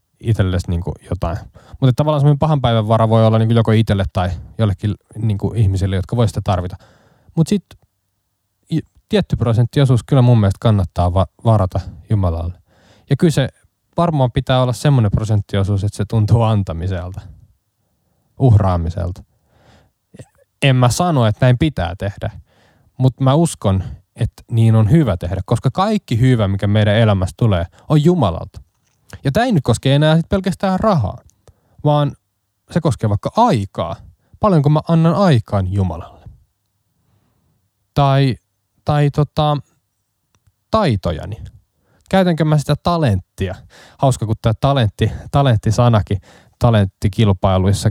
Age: 20-39